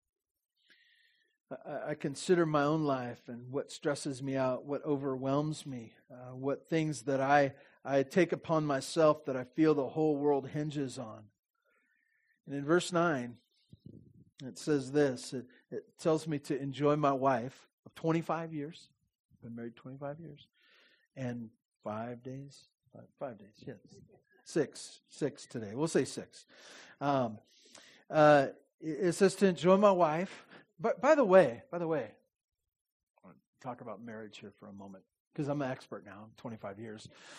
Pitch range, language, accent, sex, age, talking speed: 130-175 Hz, English, American, male, 40-59, 160 wpm